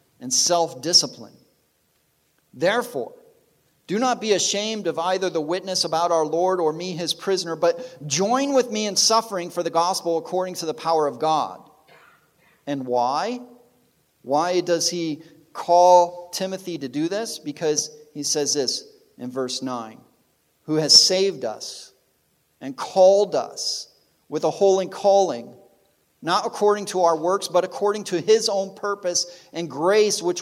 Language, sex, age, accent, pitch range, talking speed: English, male, 40-59, American, 135-190 Hz, 150 wpm